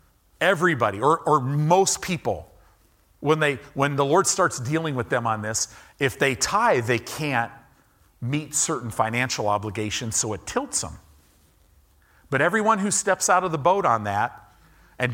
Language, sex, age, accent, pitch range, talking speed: English, male, 50-69, American, 100-135 Hz, 160 wpm